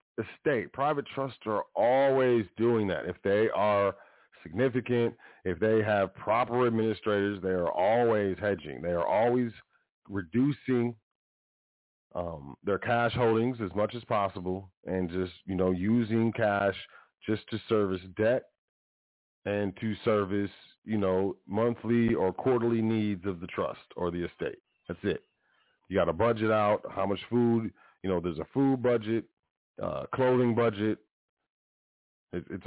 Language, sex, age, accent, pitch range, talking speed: English, male, 40-59, American, 95-120 Hz, 140 wpm